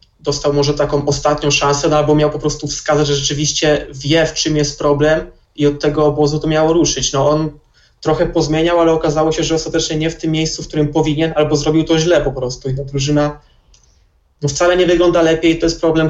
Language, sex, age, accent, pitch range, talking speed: Polish, male, 20-39, native, 140-155 Hz, 215 wpm